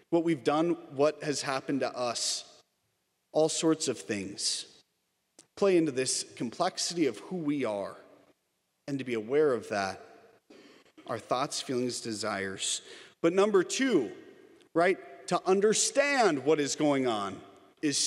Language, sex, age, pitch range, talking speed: English, male, 40-59, 150-210 Hz, 135 wpm